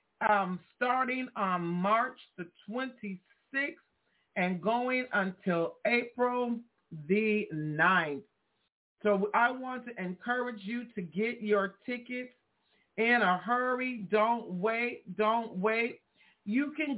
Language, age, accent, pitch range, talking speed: English, 50-69, American, 195-245 Hz, 110 wpm